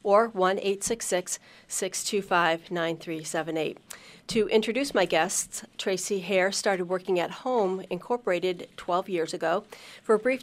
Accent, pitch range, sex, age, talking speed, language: American, 175-195 Hz, female, 40-59, 110 wpm, English